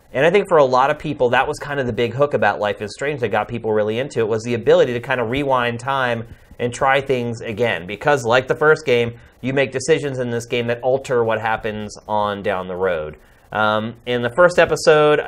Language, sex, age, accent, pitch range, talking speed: English, male, 30-49, American, 110-135 Hz, 240 wpm